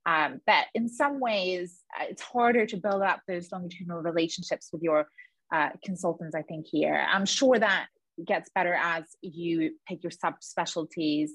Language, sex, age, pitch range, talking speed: English, female, 20-39, 170-210 Hz, 165 wpm